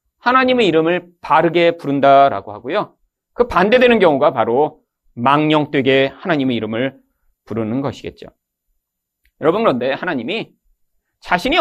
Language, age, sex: Korean, 40-59, male